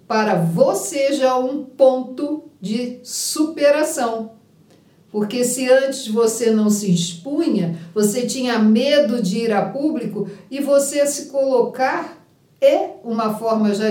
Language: Portuguese